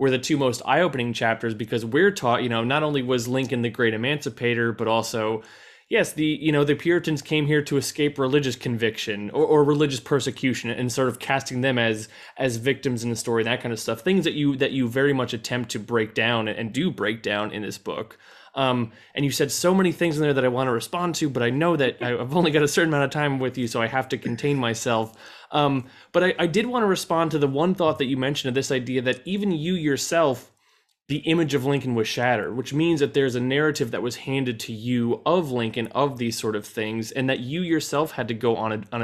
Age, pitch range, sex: 20-39, 120-150 Hz, male